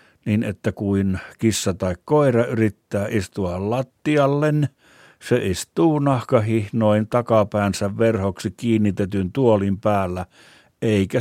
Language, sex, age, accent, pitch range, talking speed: Finnish, male, 60-79, native, 100-120 Hz, 100 wpm